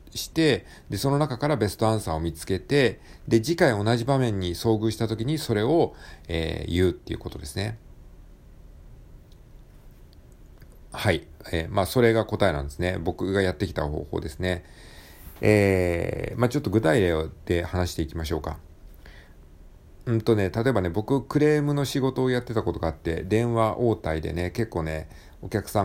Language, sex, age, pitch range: Japanese, male, 50-69, 80-115 Hz